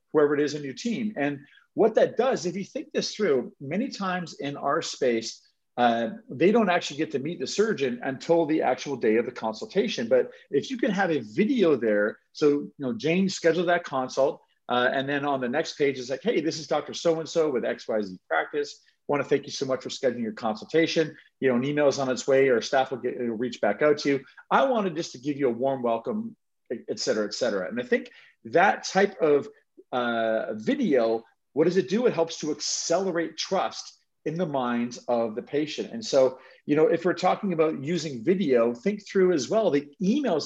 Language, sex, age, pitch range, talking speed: English, male, 40-59, 135-195 Hz, 220 wpm